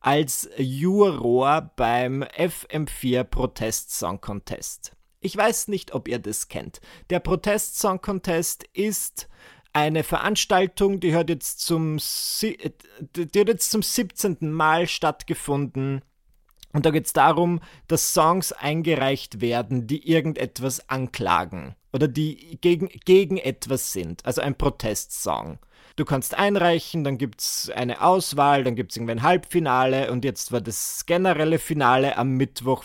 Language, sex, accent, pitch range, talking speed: German, male, German, 130-180 Hz, 135 wpm